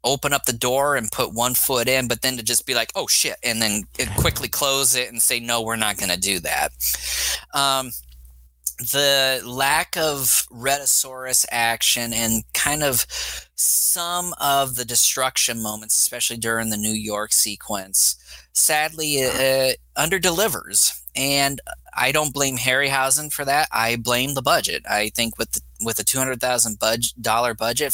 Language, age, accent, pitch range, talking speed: English, 20-39, American, 110-140 Hz, 160 wpm